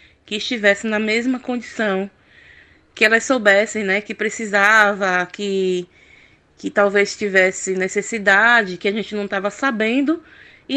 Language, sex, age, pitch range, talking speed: Portuguese, female, 20-39, 195-245 Hz, 130 wpm